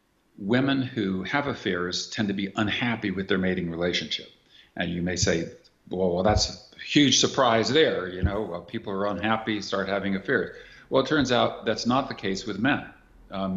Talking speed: 190 wpm